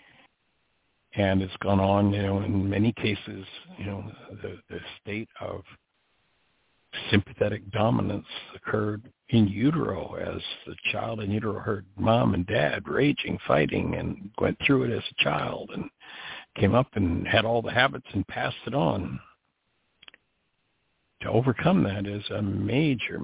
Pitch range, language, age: 100-115 Hz, English, 60-79